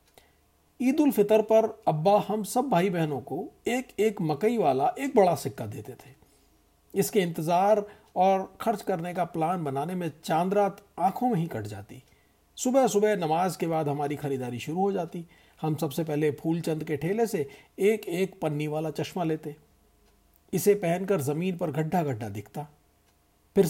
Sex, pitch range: male, 140-205 Hz